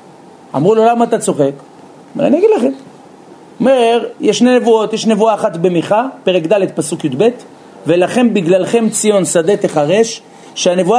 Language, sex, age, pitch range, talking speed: Hebrew, male, 40-59, 185-240 Hz, 140 wpm